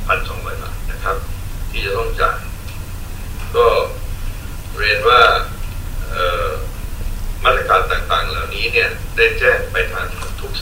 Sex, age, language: male, 60-79, Thai